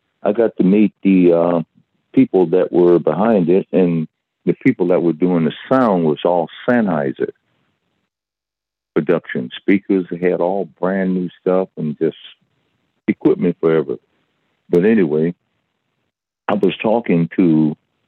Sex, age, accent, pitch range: male, 50-69, American, 75-90 Hz